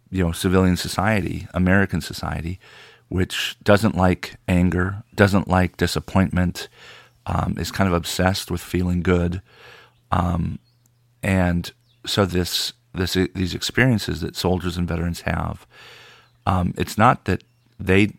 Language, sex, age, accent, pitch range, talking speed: English, male, 40-59, American, 90-105 Hz, 125 wpm